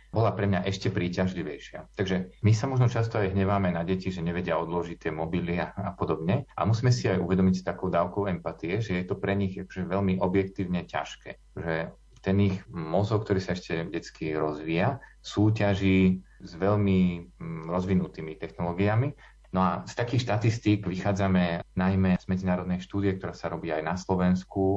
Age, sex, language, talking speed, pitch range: 30-49, male, Slovak, 165 wpm, 85-100 Hz